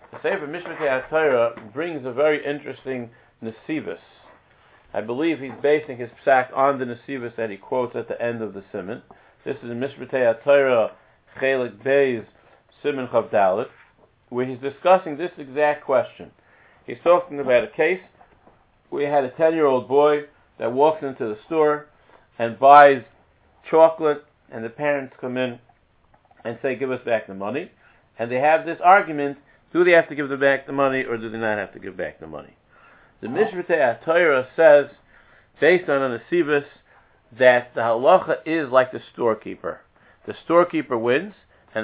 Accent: American